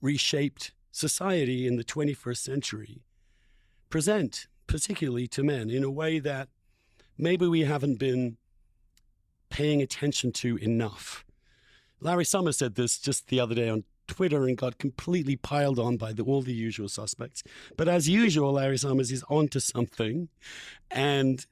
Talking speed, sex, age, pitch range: 145 wpm, male, 50-69, 115-145 Hz